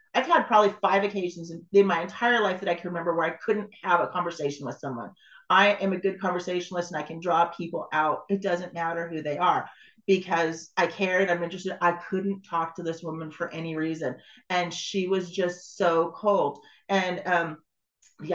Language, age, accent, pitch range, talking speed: English, 30-49, American, 155-190 Hz, 200 wpm